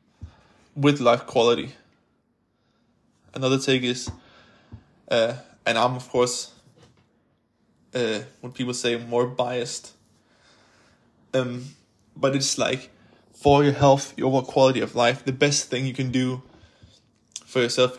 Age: 20-39